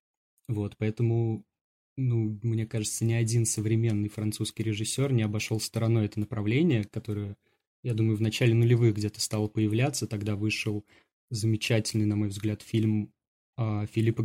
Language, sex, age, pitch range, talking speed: Russian, male, 20-39, 110-120 Hz, 140 wpm